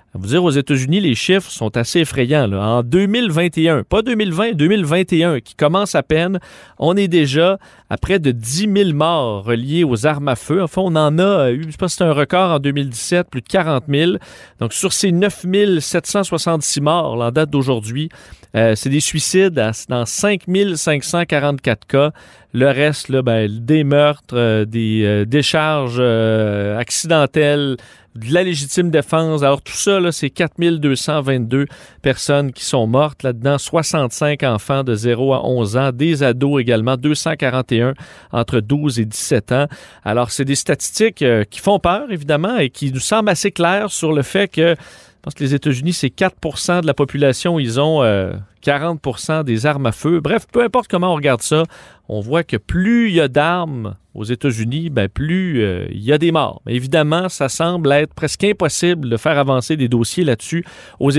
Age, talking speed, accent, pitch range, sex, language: 40-59, 185 wpm, Canadian, 130-175 Hz, male, French